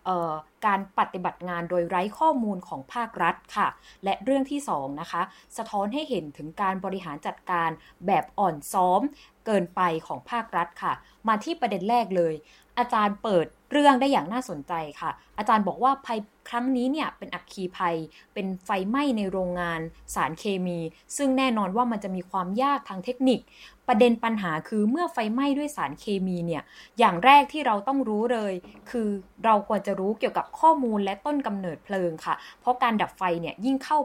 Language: Thai